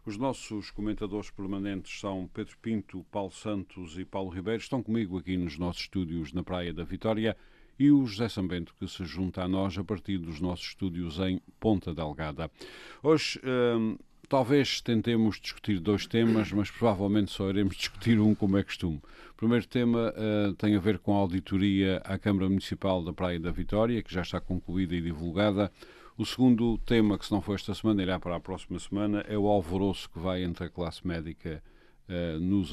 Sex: male